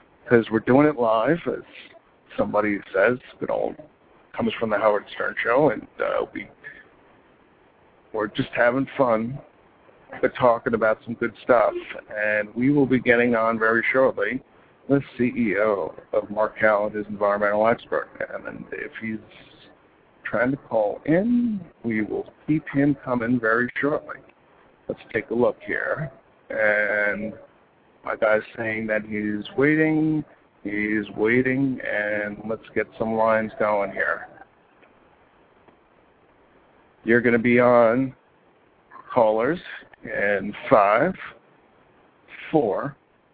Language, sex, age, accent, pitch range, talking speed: English, male, 50-69, American, 110-135 Hz, 120 wpm